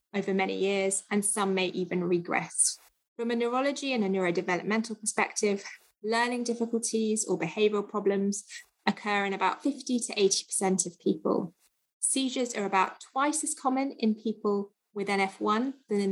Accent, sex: British, female